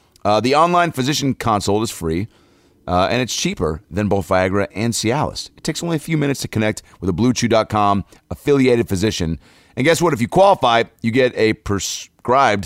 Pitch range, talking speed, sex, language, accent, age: 95-135 Hz, 185 wpm, male, English, American, 30-49